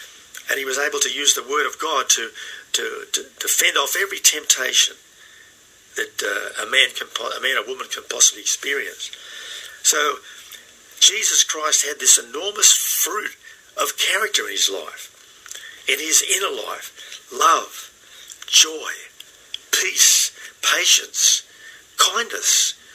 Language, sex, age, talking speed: English, male, 50-69, 125 wpm